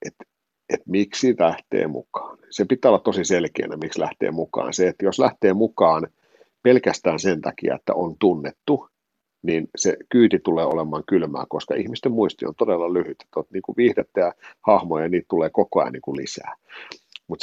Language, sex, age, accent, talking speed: Finnish, male, 50-69, native, 165 wpm